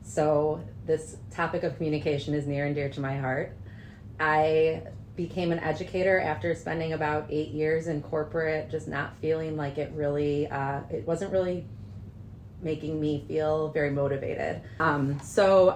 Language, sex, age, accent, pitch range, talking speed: English, female, 30-49, American, 135-155 Hz, 150 wpm